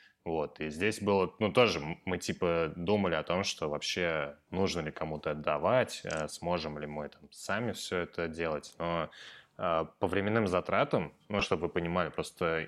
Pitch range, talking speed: 80-105 Hz, 160 wpm